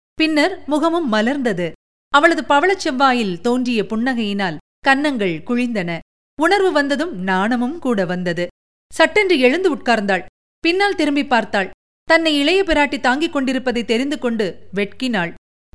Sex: female